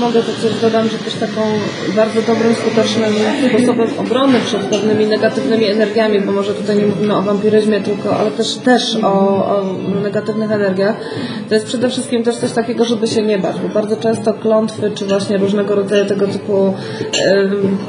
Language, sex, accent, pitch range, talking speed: Polish, female, native, 210-235 Hz, 180 wpm